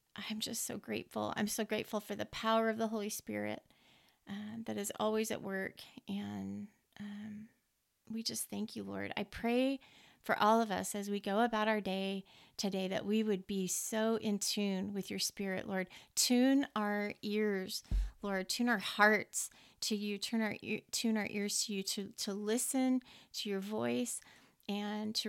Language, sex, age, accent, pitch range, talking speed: English, female, 30-49, American, 200-225 Hz, 180 wpm